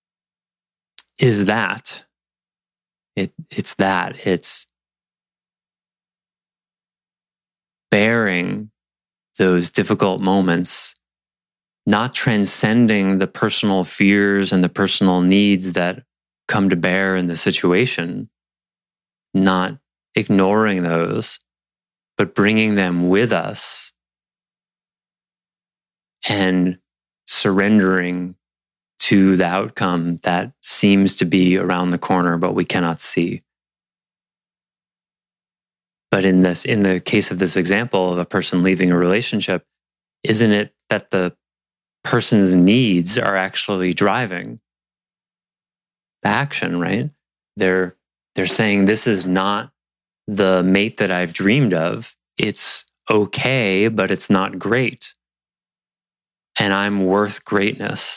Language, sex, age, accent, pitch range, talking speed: English, male, 30-49, American, 90-100 Hz, 100 wpm